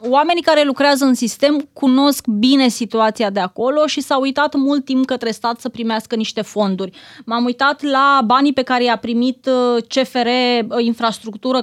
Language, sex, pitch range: Romanian, female, 235-280 Hz